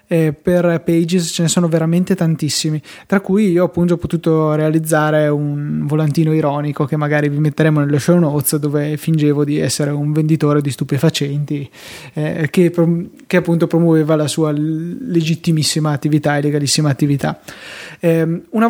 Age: 20-39